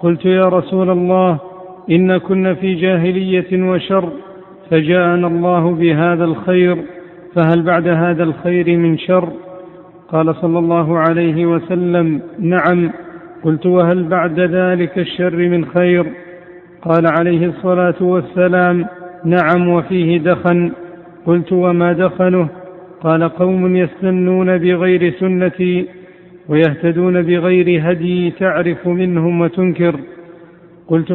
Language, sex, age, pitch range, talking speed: Arabic, male, 50-69, 175-185 Hz, 105 wpm